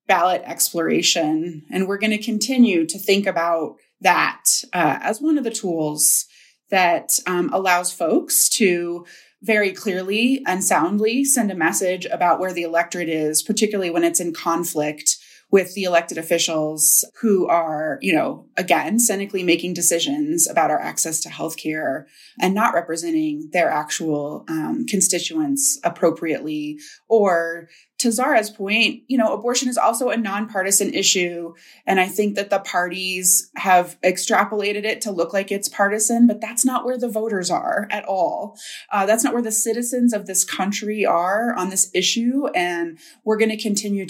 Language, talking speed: English, 160 wpm